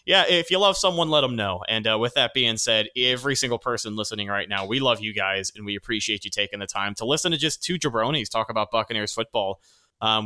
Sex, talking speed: male, 245 wpm